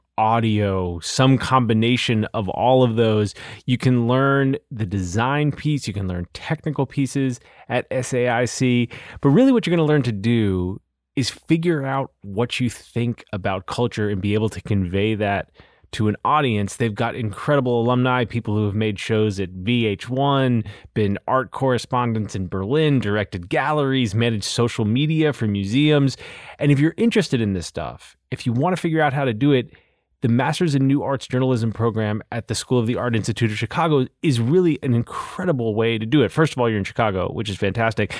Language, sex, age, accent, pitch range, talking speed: English, male, 20-39, American, 110-140 Hz, 185 wpm